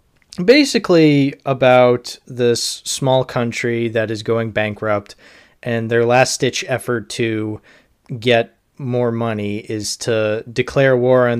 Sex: male